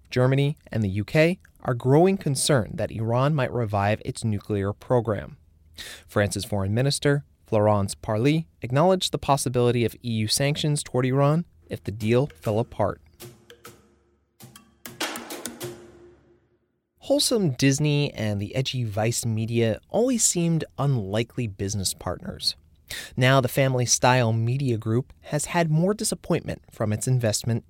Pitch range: 110-145 Hz